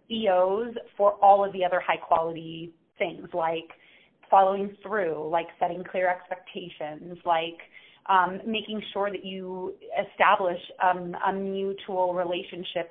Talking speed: 120 wpm